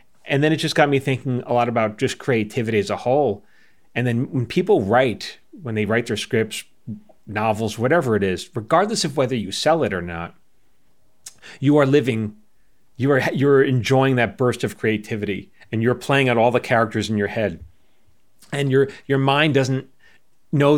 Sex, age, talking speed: male, 30-49, 185 wpm